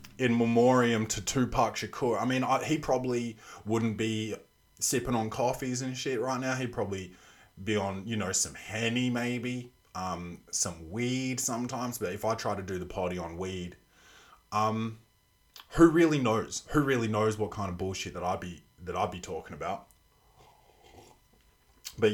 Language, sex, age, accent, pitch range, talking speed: English, male, 20-39, Australian, 100-120 Hz, 170 wpm